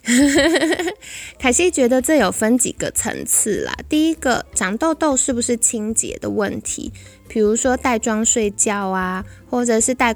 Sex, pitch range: female, 200-245 Hz